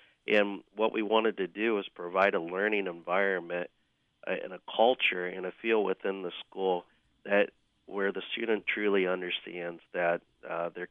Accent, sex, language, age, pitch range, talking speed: American, male, English, 40-59, 90-100 Hz, 160 wpm